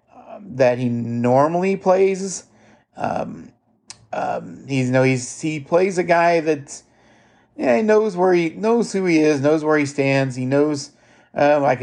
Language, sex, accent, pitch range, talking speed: English, male, American, 125-165 Hz, 160 wpm